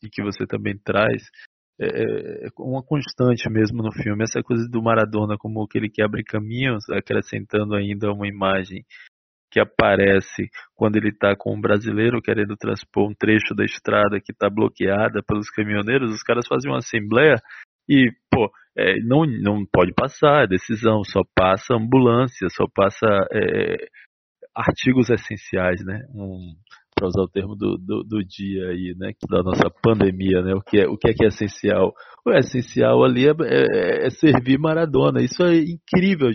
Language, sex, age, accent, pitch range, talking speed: Portuguese, male, 20-39, Brazilian, 105-145 Hz, 165 wpm